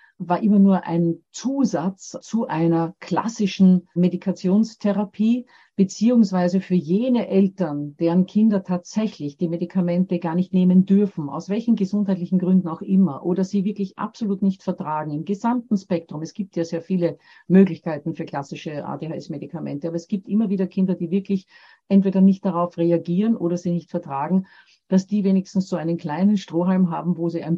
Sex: female